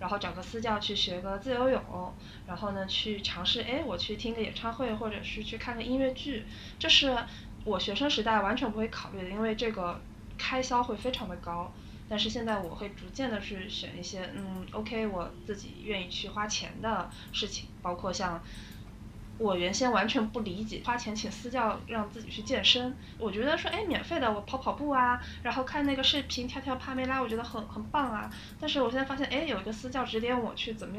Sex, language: female, Chinese